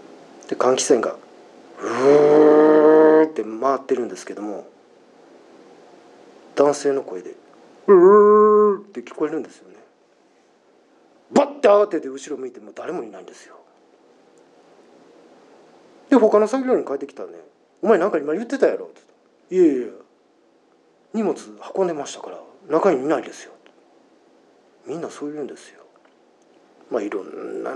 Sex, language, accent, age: male, Japanese, native, 40-59